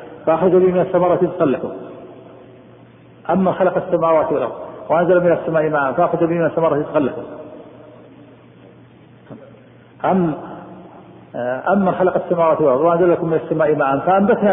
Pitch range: 155-190 Hz